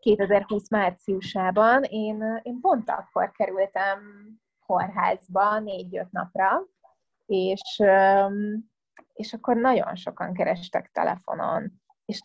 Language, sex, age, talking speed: Hungarian, female, 20-39, 90 wpm